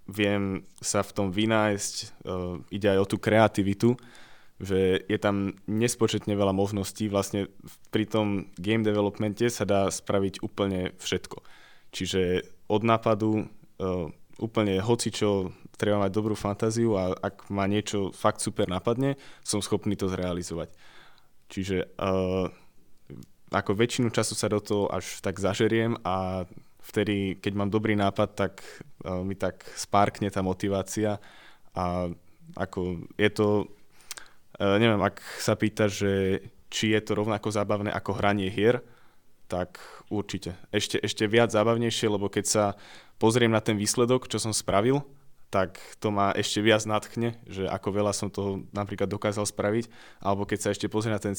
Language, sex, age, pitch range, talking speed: Slovak, male, 20-39, 95-110 Hz, 145 wpm